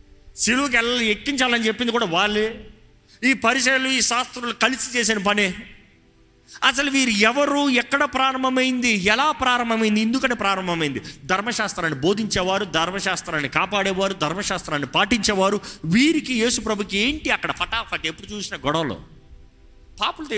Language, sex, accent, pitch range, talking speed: Telugu, male, native, 145-235 Hz, 110 wpm